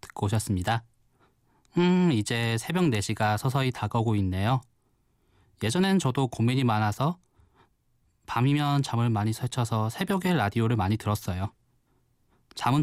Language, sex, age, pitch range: Korean, male, 20-39, 110-140 Hz